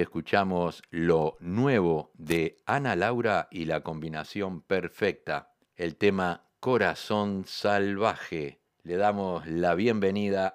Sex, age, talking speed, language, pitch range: male, 60-79, 100 wpm, Spanish, 95-130 Hz